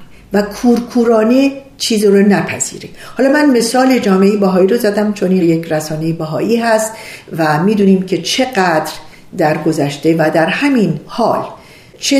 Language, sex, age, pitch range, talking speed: Persian, female, 50-69, 165-260 Hz, 140 wpm